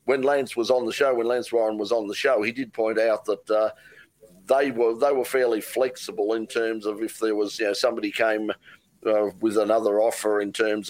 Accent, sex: Australian, male